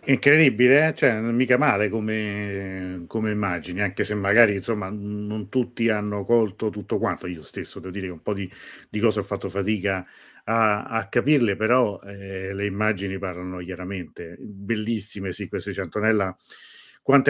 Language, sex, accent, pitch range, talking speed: Italian, male, native, 95-110 Hz, 160 wpm